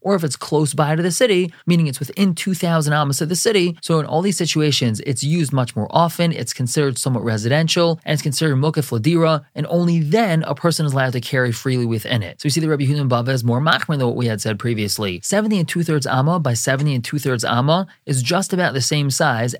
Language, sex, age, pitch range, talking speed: English, male, 30-49, 125-165 Hz, 235 wpm